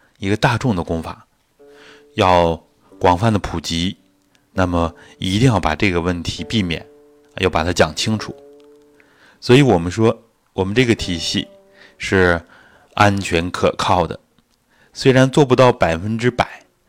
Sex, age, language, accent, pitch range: male, 20-39, Chinese, native, 85-125 Hz